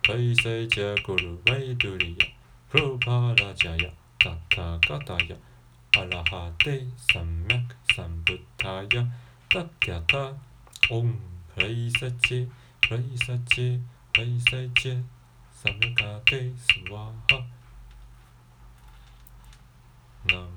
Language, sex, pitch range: Chinese, male, 100-125 Hz